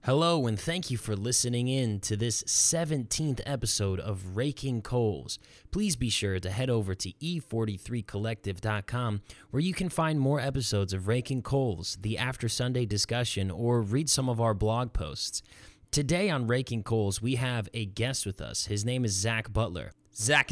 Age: 20-39